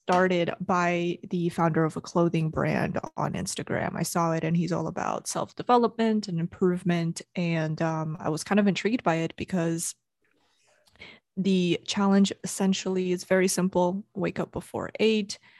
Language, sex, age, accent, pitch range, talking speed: English, female, 20-39, American, 165-185 Hz, 160 wpm